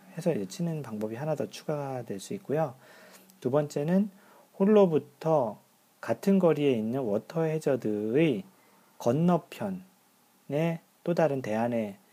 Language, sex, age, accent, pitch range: Korean, male, 40-59, native, 110-180 Hz